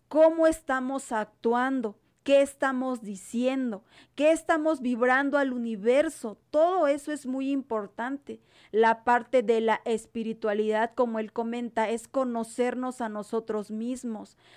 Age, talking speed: 40-59, 120 wpm